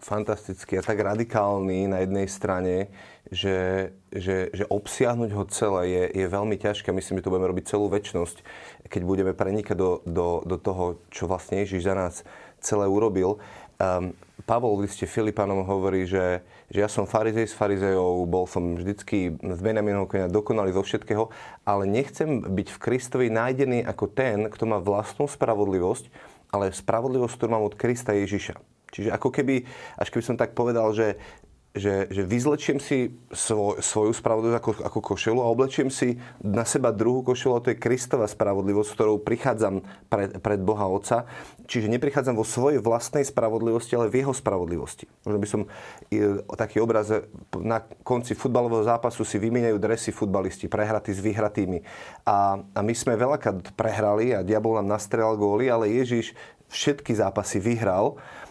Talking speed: 160 wpm